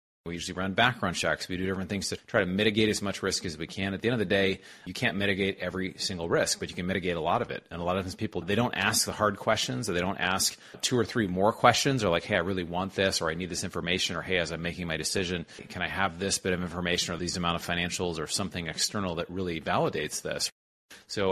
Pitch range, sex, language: 90-105 Hz, male, English